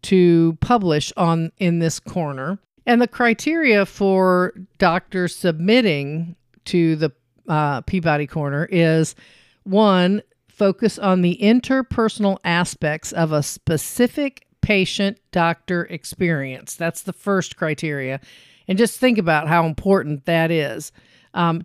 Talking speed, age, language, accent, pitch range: 120 wpm, 50-69, English, American, 160-200 Hz